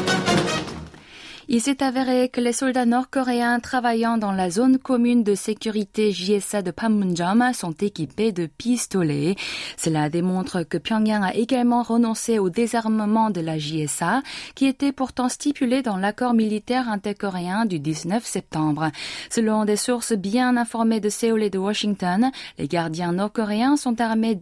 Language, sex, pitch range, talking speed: French, female, 180-245 Hz, 145 wpm